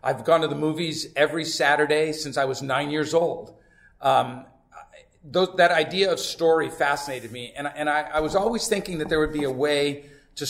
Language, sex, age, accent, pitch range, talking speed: English, male, 40-59, American, 135-160 Hz, 195 wpm